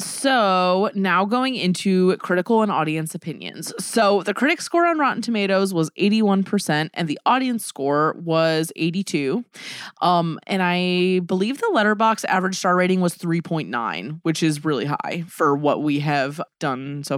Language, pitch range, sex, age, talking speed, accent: English, 165-220 Hz, female, 20-39, 155 wpm, American